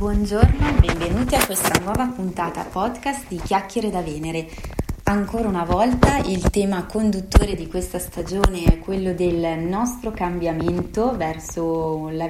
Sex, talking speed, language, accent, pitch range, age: female, 135 wpm, Italian, native, 165-205 Hz, 20-39